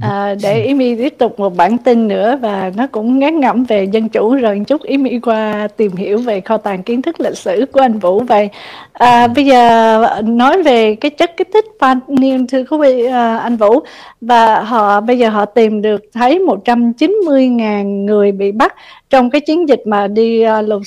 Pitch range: 215-270 Hz